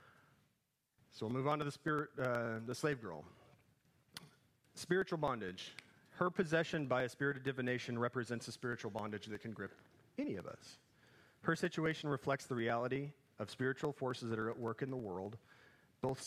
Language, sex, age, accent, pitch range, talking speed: English, male, 40-59, American, 110-145 Hz, 165 wpm